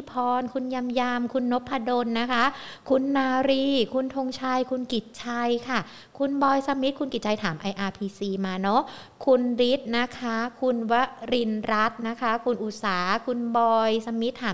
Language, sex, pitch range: Thai, female, 225-265 Hz